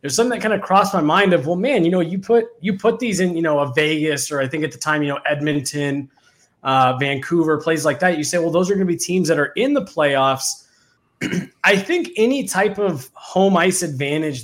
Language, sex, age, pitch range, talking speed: English, male, 20-39, 140-185 Hz, 245 wpm